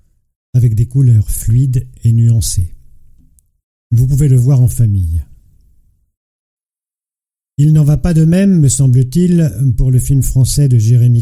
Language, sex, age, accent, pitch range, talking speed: French, male, 50-69, French, 100-135 Hz, 140 wpm